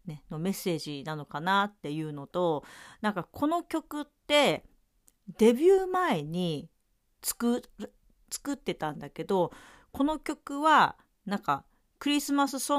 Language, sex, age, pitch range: Japanese, female, 40-59, 165-255 Hz